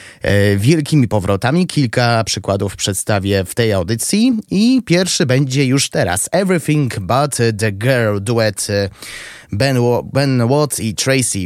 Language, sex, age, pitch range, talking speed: Polish, male, 30-49, 105-145 Hz, 125 wpm